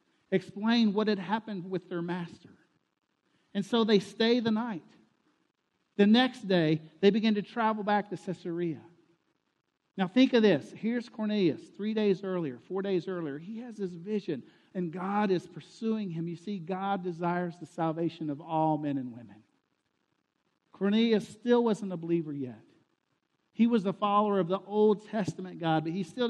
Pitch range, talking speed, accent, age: 175-220 Hz, 165 wpm, American, 50-69